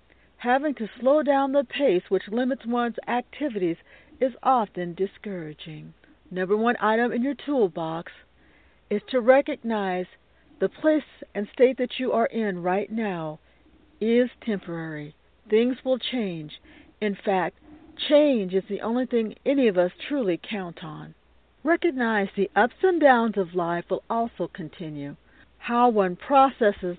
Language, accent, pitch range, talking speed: English, American, 180-250 Hz, 140 wpm